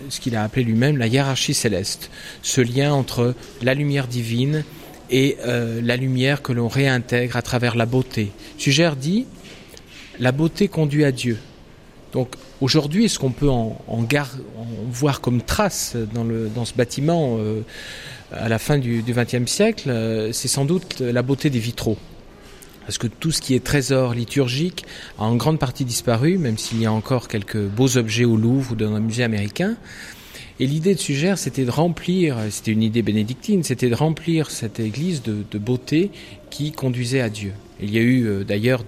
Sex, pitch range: male, 110-140 Hz